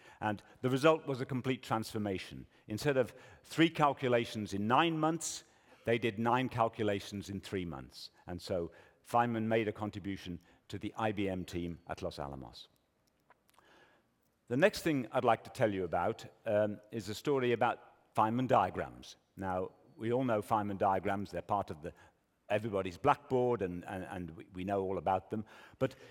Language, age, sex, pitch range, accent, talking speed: English, 50-69, male, 100-130 Hz, British, 165 wpm